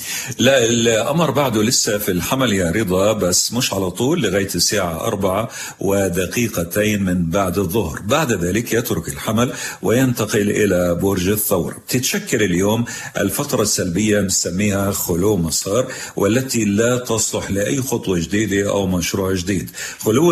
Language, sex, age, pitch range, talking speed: Arabic, male, 50-69, 95-115 Hz, 130 wpm